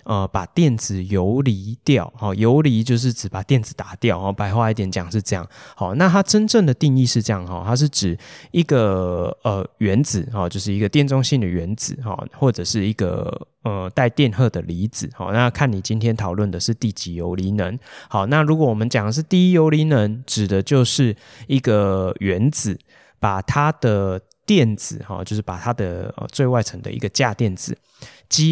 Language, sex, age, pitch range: Chinese, male, 20-39, 100-130 Hz